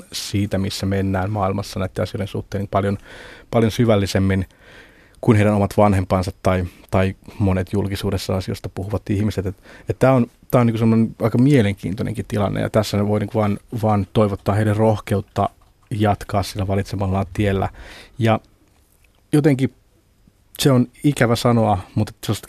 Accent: native